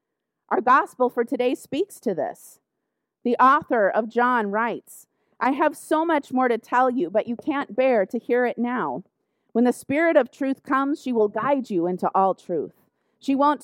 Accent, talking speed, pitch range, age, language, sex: American, 190 wpm, 225-275 Hz, 30-49, English, female